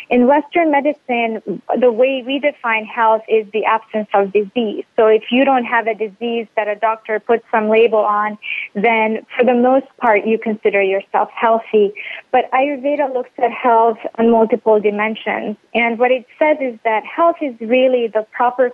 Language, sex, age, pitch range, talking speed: English, female, 30-49, 210-250 Hz, 175 wpm